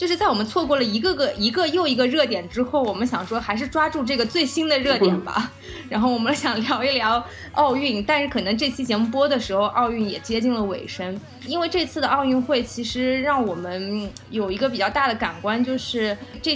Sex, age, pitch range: female, 20-39, 205-275 Hz